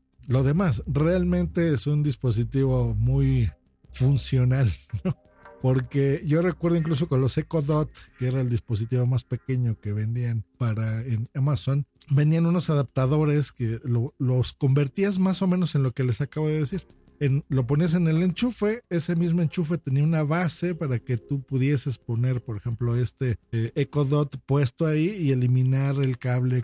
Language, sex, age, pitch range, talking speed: Spanish, male, 40-59, 125-170 Hz, 155 wpm